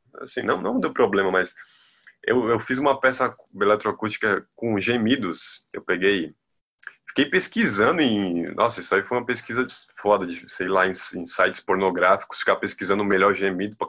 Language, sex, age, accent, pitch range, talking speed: Portuguese, male, 20-39, Brazilian, 105-140 Hz, 175 wpm